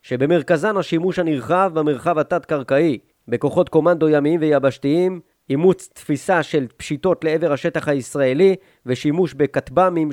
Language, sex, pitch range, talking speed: Hebrew, male, 140-170 Hz, 105 wpm